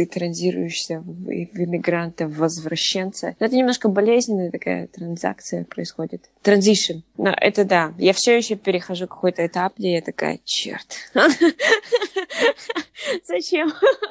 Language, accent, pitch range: Russian, native, 180-235 Hz